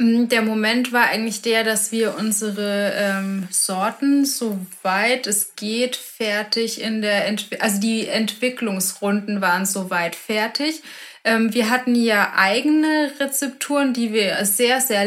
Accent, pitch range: German, 210-240 Hz